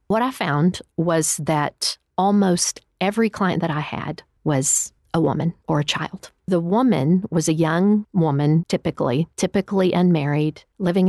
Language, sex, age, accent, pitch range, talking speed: English, female, 50-69, American, 150-190 Hz, 145 wpm